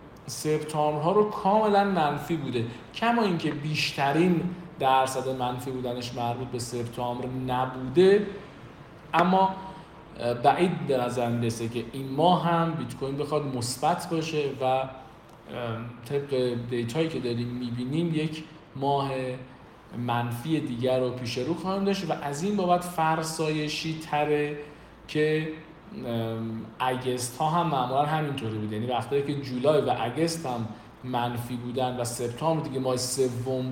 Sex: male